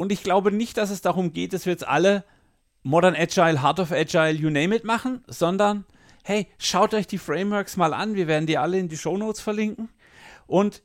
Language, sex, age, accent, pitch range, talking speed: German, male, 40-59, German, 140-195 Hz, 210 wpm